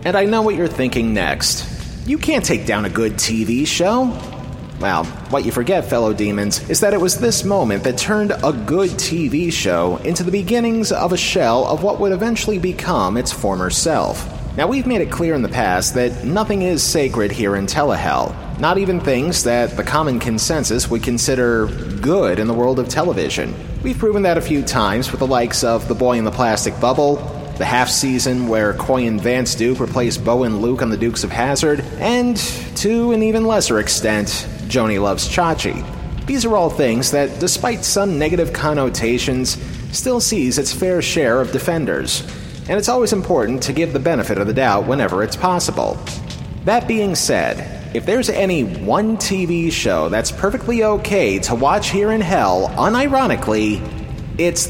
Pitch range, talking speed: 120-195 Hz, 185 wpm